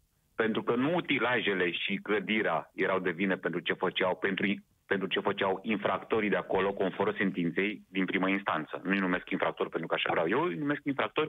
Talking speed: 175 wpm